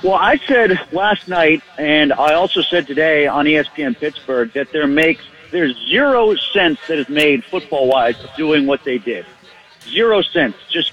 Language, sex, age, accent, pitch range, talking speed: English, male, 40-59, American, 155-220 Hz, 175 wpm